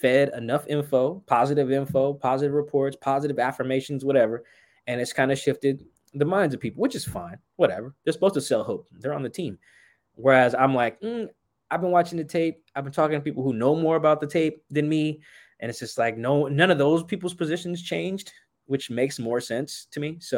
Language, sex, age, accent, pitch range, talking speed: English, male, 20-39, American, 115-150 Hz, 210 wpm